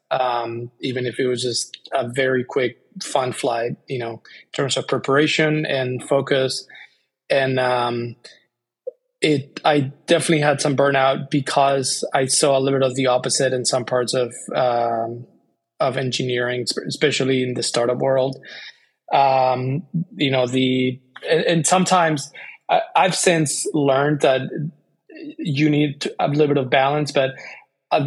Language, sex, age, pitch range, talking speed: English, male, 20-39, 125-150 Hz, 150 wpm